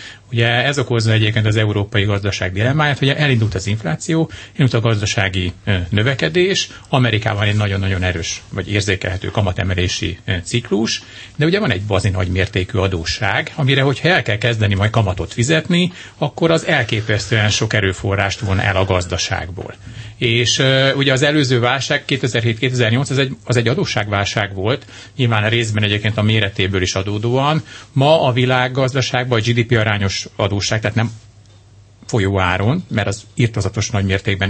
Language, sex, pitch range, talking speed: Hungarian, male, 100-130 Hz, 145 wpm